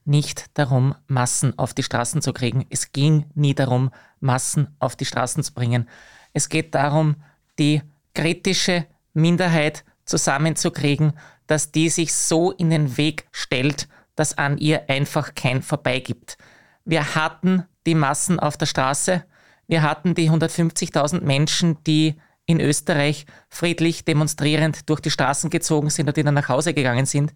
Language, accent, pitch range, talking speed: German, Austrian, 140-165 Hz, 150 wpm